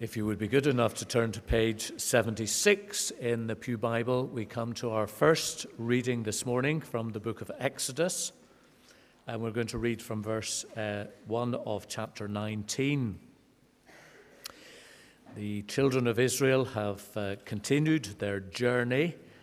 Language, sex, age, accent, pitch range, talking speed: English, male, 60-79, British, 105-125 Hz, 150 wpm